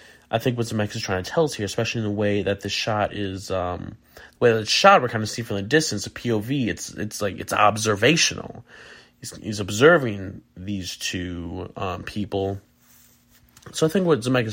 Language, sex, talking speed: English, male, 205 wpm